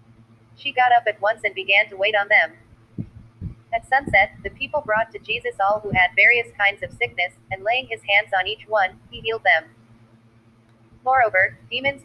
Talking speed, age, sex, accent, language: 185 wpm, 30-49, female, American, English